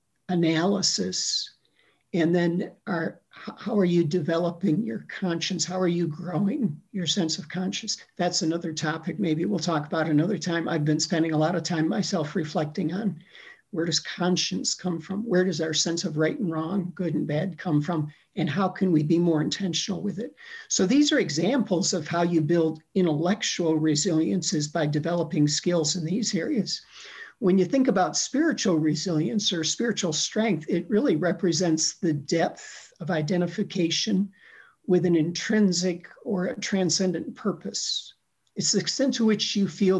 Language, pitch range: English, 160-195 Hz